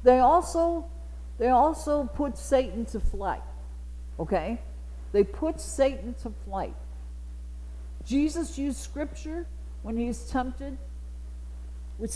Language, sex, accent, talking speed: English, female, American, 110 wpm